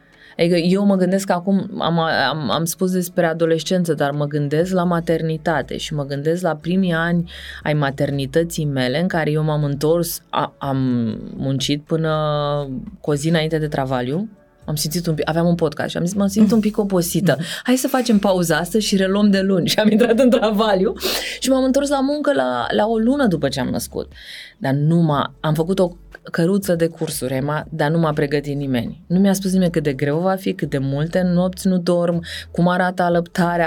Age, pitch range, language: 20-39, 155-190 Hz, Romanian